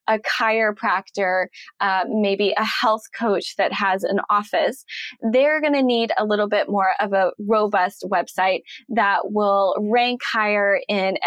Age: 10-29